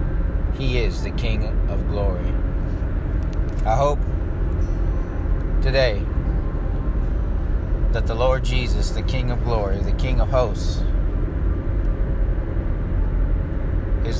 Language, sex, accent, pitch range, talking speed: English, male, American, 90-105 Hz, 95 wpm